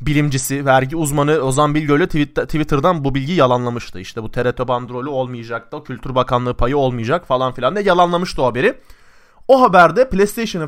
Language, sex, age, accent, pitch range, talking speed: Turkish, male, 30-49, native, 125-200 Hz, 155 wpm